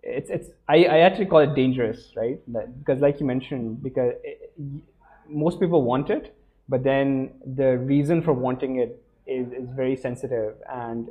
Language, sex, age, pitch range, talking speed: Urdu, male, 20-39, 120-145 Hz, 175 wpm